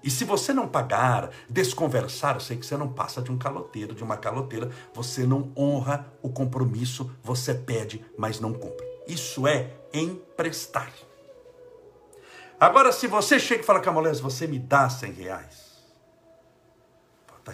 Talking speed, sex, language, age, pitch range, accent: 150 wpm, male, Portuguese, 60-79, 125-175 Hz, Brazilian